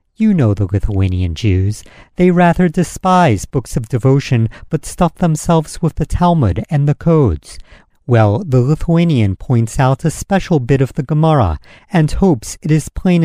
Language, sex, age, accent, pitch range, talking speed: English, male, 50-69, American, 110-160 Hz, 165 wpm